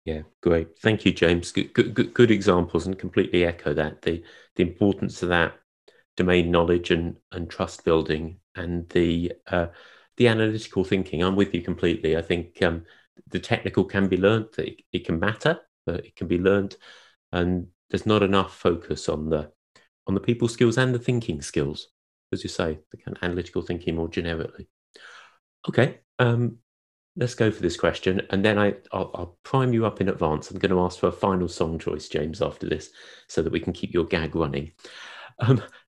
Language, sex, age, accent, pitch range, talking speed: English, male, 30-49, British, 85-110 Hz, 190 wpm